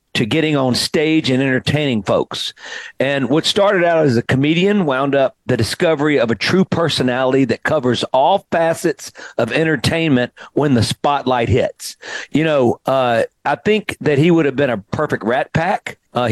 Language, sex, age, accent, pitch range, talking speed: English, male, 50-69, American, 130-160 Hz, 175 wpm